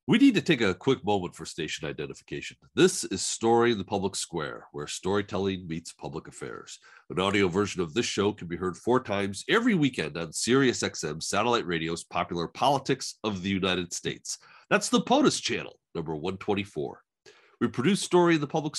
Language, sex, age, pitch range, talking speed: English, male, 40-59, 95-150 Hz, 185 wpm